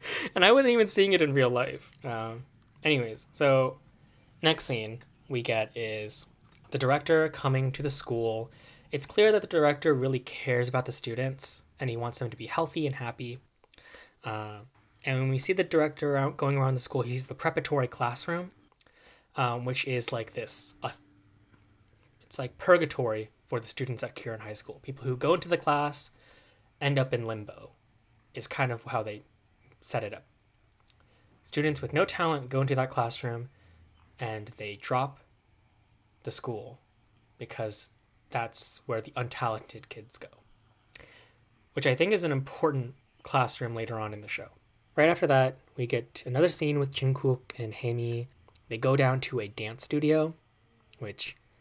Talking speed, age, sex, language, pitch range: 170 wpm, 10-29, male, English, 110-140 Hz